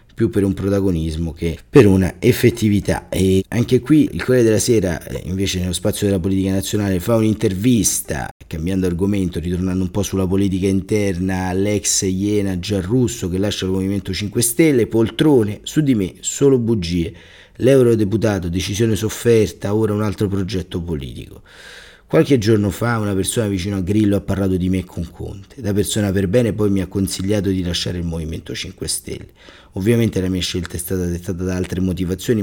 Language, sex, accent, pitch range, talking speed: Italian, male, native, 85-110 Hz, 170 wpm